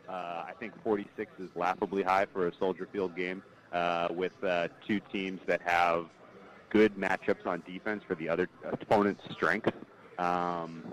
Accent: American